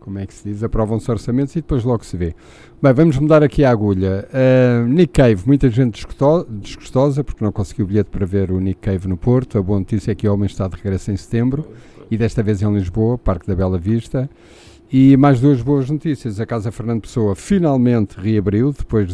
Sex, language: male, Portuguese